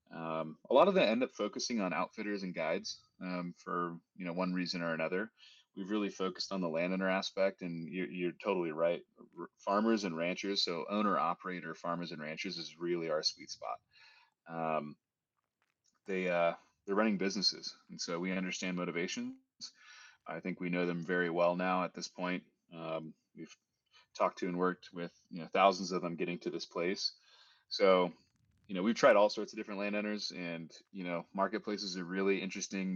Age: 30-49